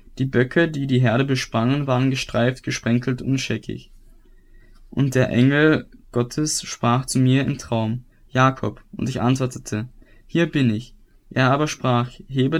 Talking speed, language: 150 wpm, German